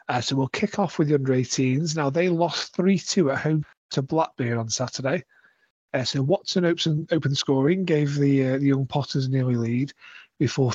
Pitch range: 135-170 Hz